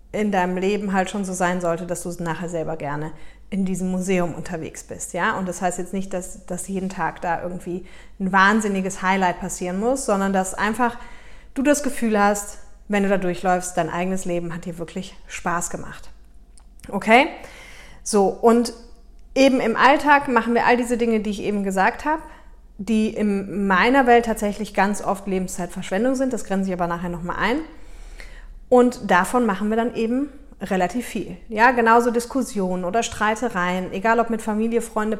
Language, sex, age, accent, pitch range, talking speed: German, female, 30-49, German, 185-235 Hz, 175 wpm